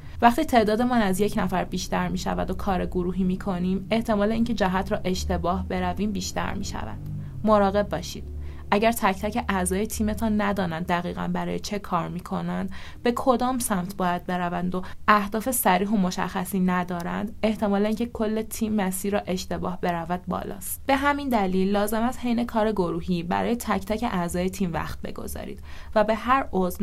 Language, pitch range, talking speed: Persian, 185-225 Hz, 170 wpm